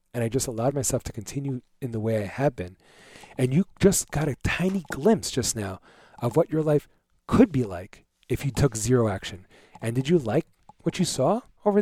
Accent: American